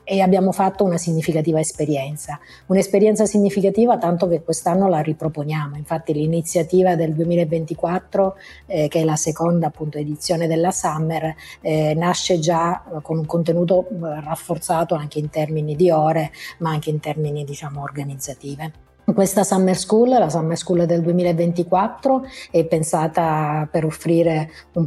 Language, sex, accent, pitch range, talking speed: Italian, female, native, 155-185 Hz, 140 wpm